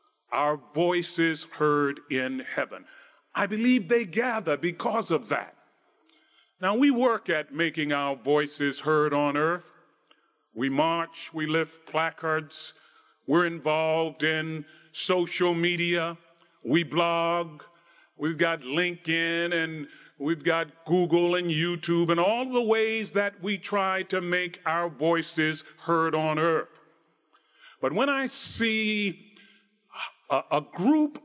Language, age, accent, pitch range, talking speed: English, 40-59, American, 160-215 Hz, 120 wpm